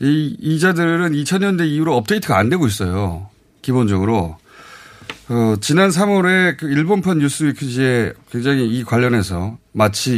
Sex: male